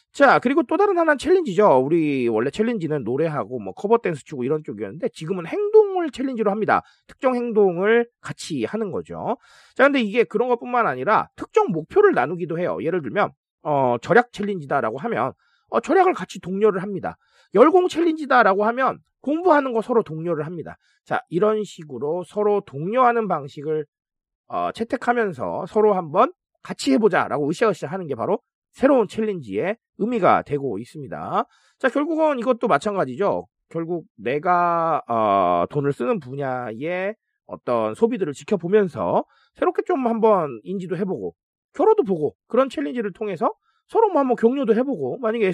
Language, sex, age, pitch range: Korean, male, 30-49, 175-260 Hz